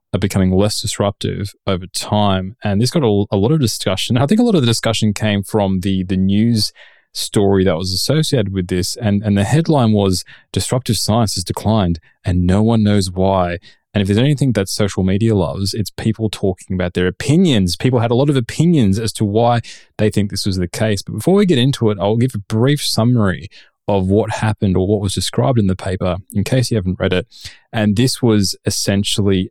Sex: male